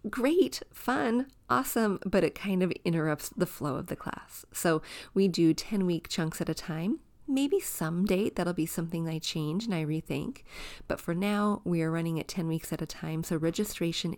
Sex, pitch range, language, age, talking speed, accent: female, 160-195 Hz, English, 30-49, 195 wpm, American